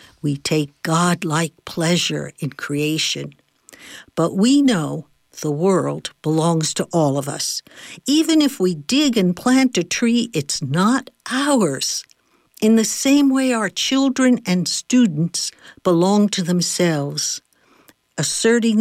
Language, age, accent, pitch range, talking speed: English, 60-79, American, 160-230 Hz, 125 wpm